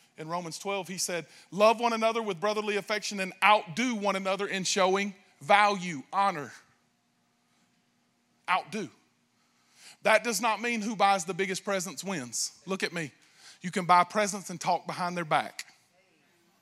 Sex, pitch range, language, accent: male, 150-195 Hz, English, American